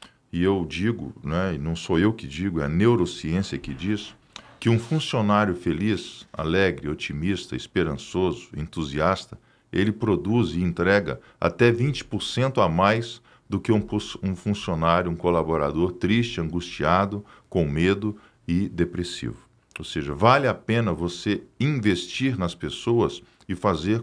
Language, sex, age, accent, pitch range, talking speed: Portuguese, male, 50-69, Brazilian, 90-120 Hz, 135 wpm